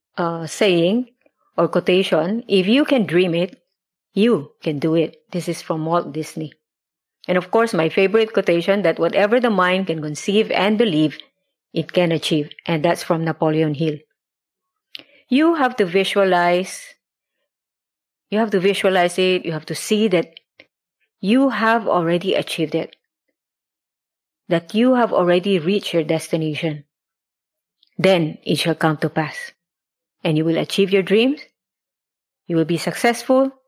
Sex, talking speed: female, 145 wpm